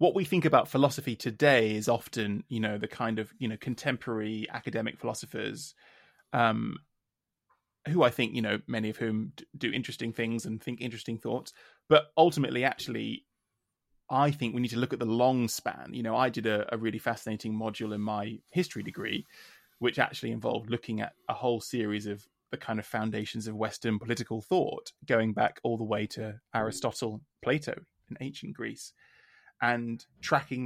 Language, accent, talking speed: English, British, 175 wpm